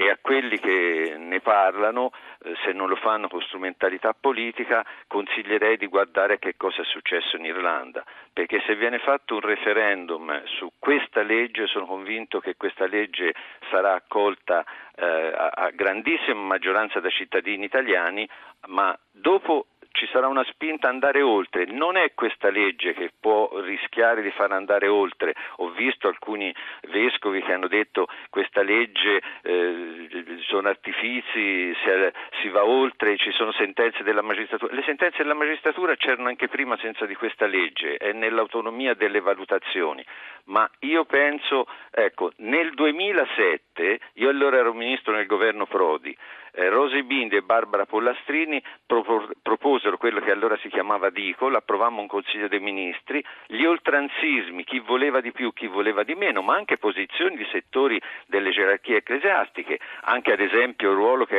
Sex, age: male, 50-69